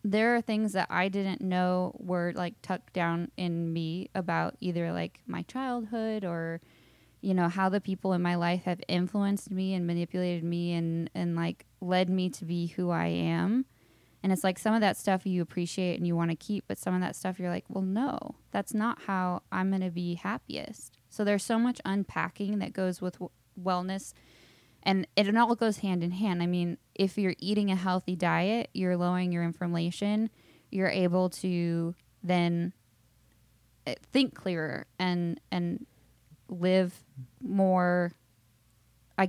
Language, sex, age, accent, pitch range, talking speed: English, female, 10-29, American, 170-190 Hz, 175 wpm